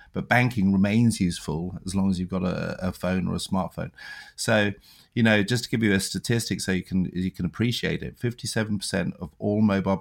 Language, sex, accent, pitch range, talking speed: English, male, British, 90-100 Hz, 210 wpm